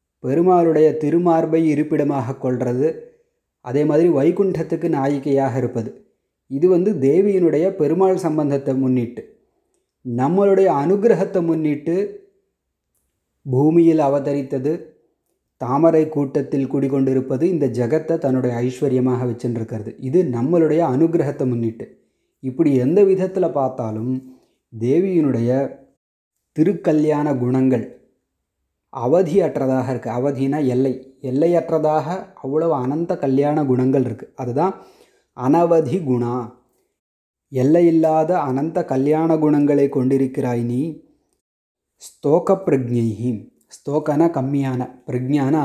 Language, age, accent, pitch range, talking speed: Tamil, 30-49, native, 130-165 Hz, 85 wpm